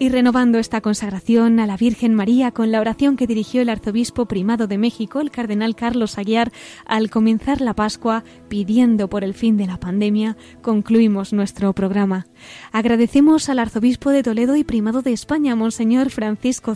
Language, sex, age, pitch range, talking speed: Spanish, female, 20-39, 215-250 Hz, 170 wpm